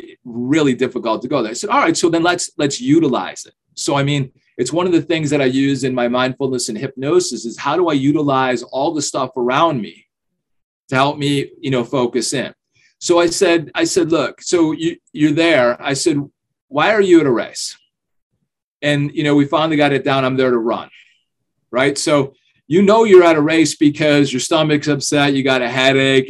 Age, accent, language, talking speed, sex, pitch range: 40-59, American, English, 215 wpm, male, 130-160 Hz